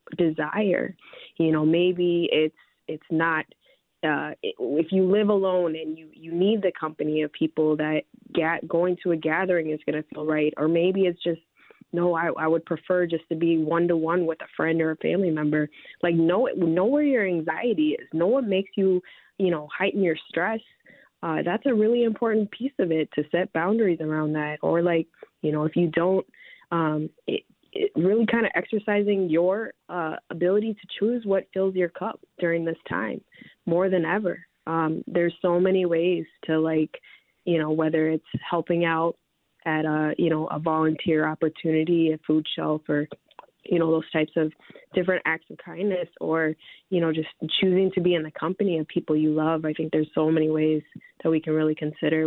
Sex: female